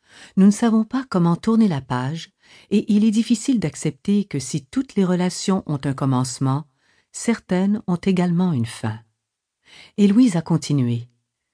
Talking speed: 155 wpm